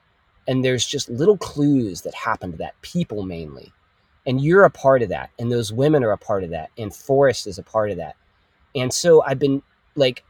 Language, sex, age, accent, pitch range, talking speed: English, male, 30-49, American, 120-170 Hz, 215 wpm